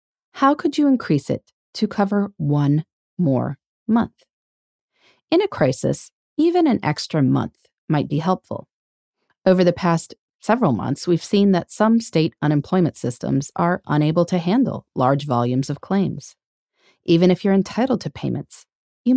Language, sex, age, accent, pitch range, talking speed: English, female, 30-49, American, 150-230 Hz, 145 wpm